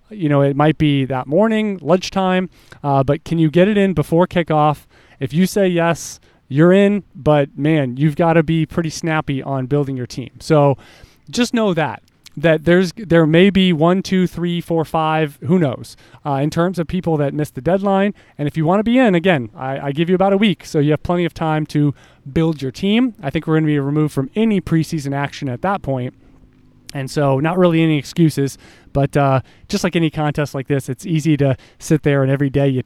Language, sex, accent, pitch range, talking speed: English, male, American, 135-170 Hz, 225 wpm